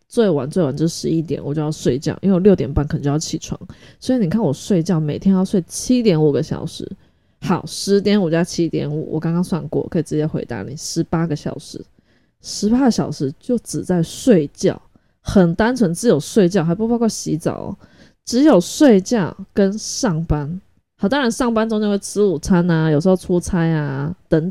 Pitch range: 155-200 Hz